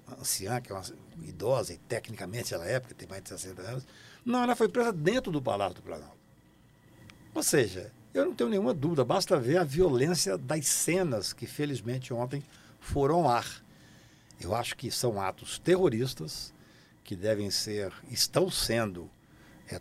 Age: 60-79